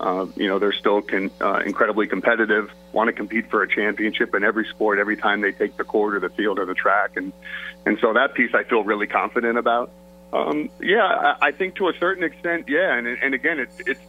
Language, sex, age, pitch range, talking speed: English, male, 40-59, 110-130 Hz, 235 wpm